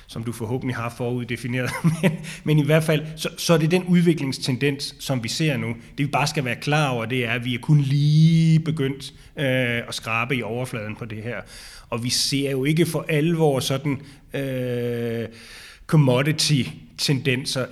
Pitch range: 120-145 Hz